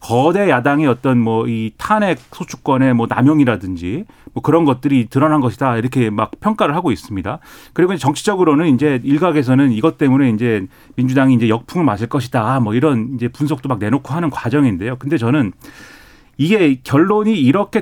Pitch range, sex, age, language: 120-165 Hz, male, 30-49, Korean